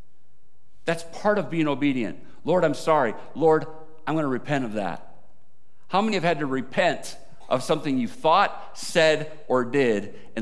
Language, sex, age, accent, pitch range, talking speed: English, male, 50-69, American, 155-225 Hz, 165 wpm